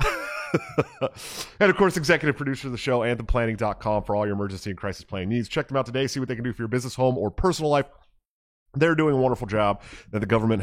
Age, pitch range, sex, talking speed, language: 30-49, 90-120 Hz, male, 230 wpm, English